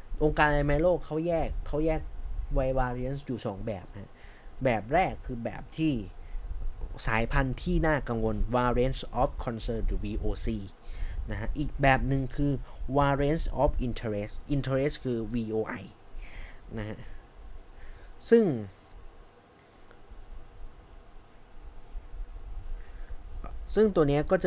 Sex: male